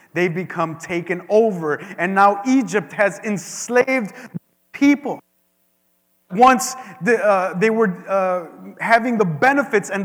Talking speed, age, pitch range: 115 wpm, 30-49, 185-260 Hz